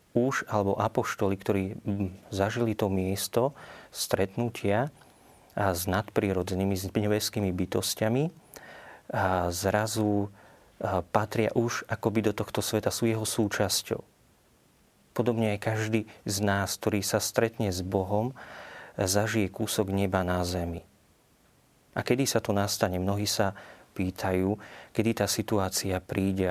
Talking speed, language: 115 wpm, Slovak